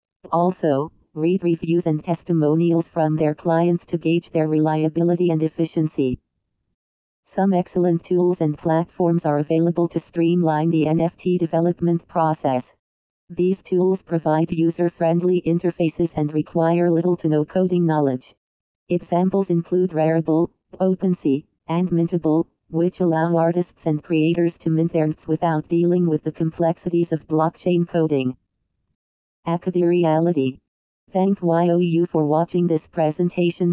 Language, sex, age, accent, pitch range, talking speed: English, female, 40-59, American, 160-175 Hz, 125 wpm